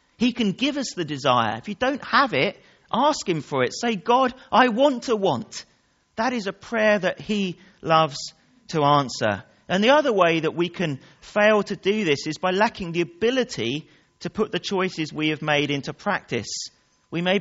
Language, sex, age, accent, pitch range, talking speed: English, male, 40-59, British, 135-200 Hz, 195 wpm